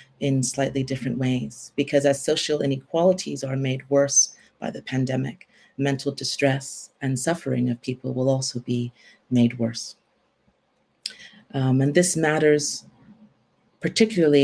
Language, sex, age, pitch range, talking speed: English, female, 30-49, 125-140 Hz, 125 wpm